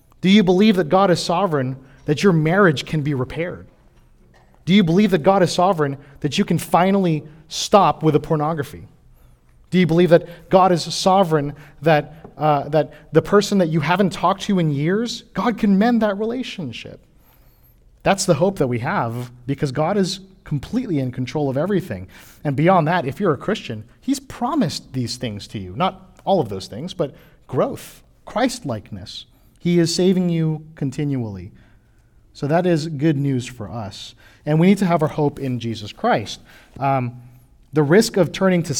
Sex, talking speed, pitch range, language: male, 180 wpm, 130-185 Hz, English